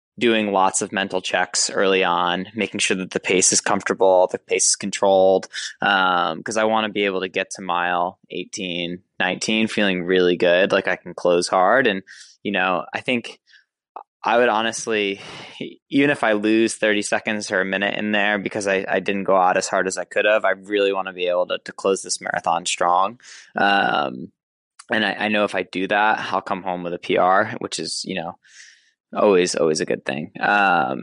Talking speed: 205 wpm